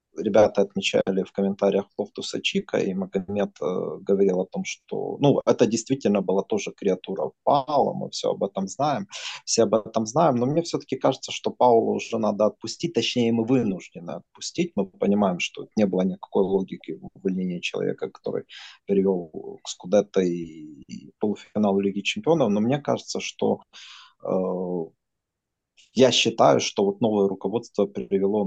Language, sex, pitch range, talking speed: Russian, male, 95-120 Hz, 150 wpm